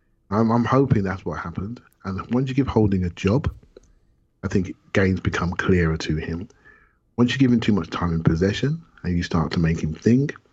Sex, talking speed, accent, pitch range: male, 200 wpm, British, 80-100 Hz